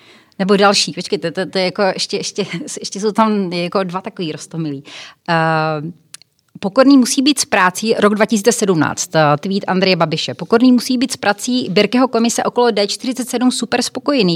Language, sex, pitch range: Czech, female, 170-225 Hz